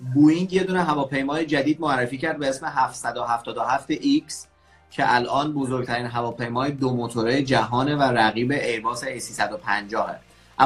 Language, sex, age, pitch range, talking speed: Persian, male, 30-49, 120-150 Hz, 125 wpm